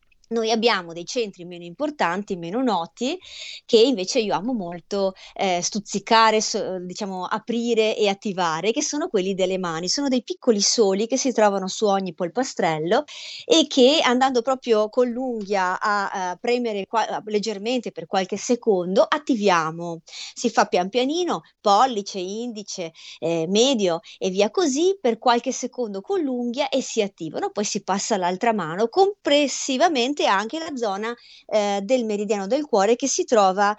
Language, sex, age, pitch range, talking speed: Italian, female, 30-49, 195-255 Hz, 155 wpm